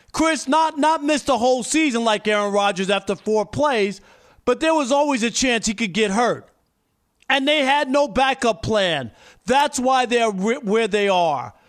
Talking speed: 180 wpm